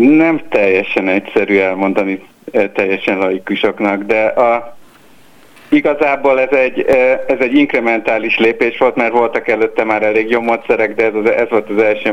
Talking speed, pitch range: 145 wpm, 105-125 Hz